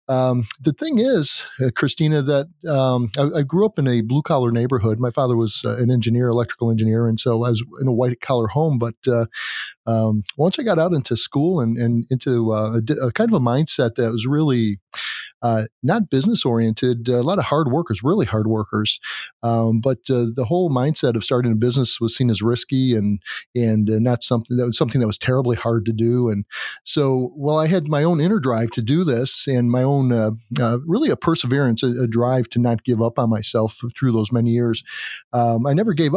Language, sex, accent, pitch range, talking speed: English, male, American, 115-140 Hz, 215 wpm